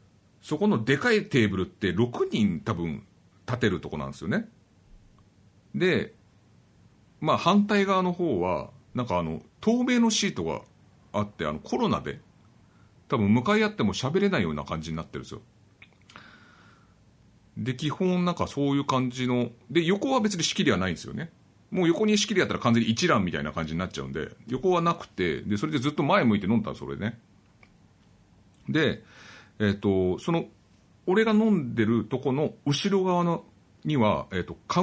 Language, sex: Japanese, male